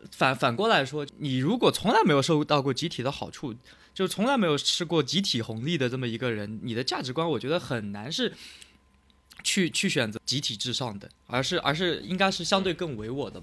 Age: 20-39